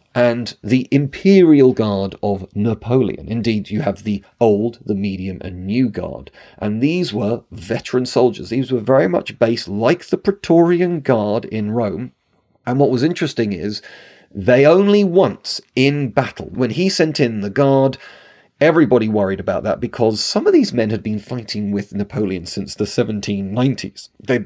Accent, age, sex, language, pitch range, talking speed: British, 40-59, male, English, 105-135 Hz, 160 wpm